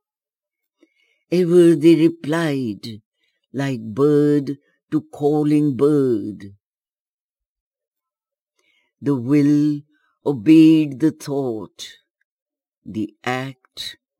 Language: German